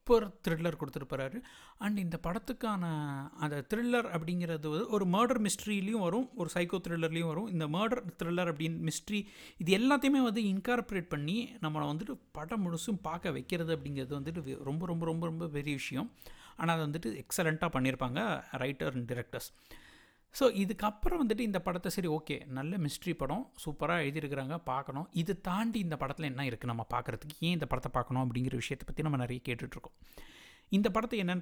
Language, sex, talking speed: Tamil, male, 155 wpm